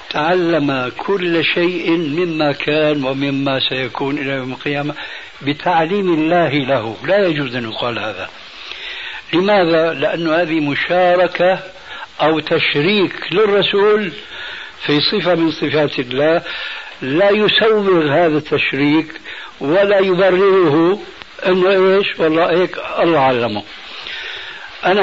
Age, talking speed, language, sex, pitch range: 60-79, 100 wpm, Arabic, male, 140-185 Hz